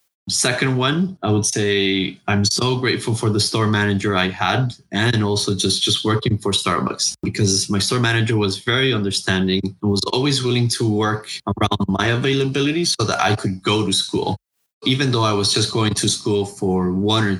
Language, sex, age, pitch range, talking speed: English, male, 20-39, 100-125 Hz, 190 wpm